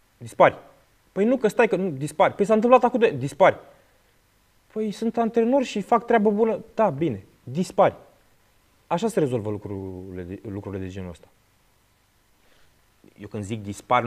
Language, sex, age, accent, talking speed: Romanian, male, 20-39, native, 160 wpm